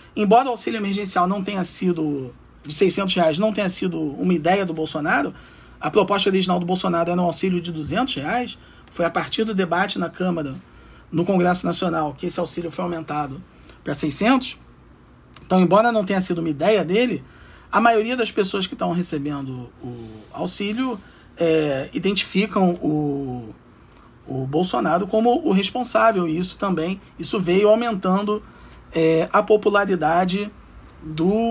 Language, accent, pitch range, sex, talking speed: Portuguese, Brazilian, 150-200 Hz, male, 150 wpm